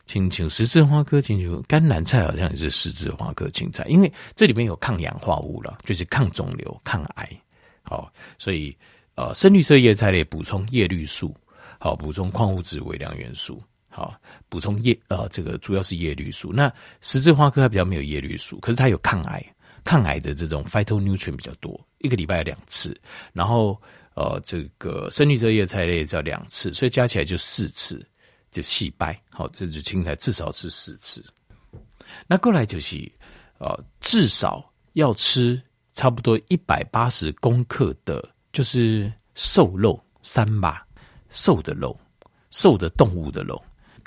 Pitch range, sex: 85-125 Hz, male